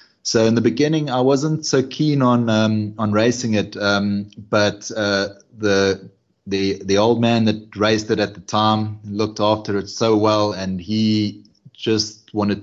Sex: male